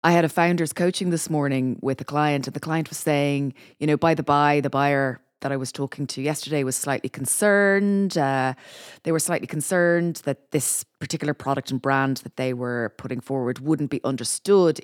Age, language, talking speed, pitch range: 30-49, English, 200 wpm, 140-180 Hz